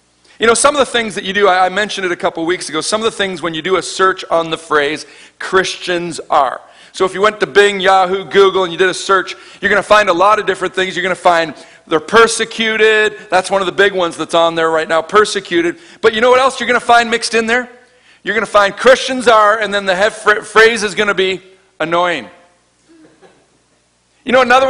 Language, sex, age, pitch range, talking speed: English, male, 40-59, 175-240 Hz, 245 wpm